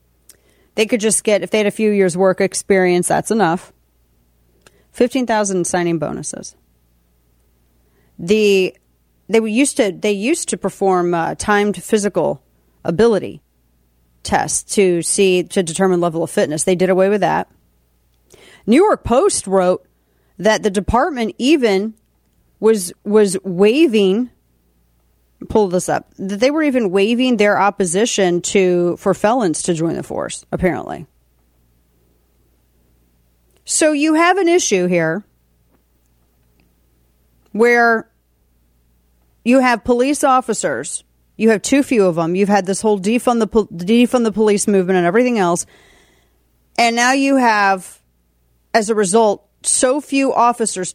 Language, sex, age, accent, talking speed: English, female, 40-59, American, 135 wpm